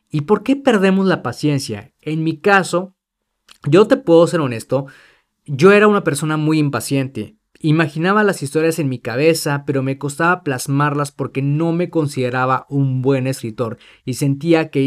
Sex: male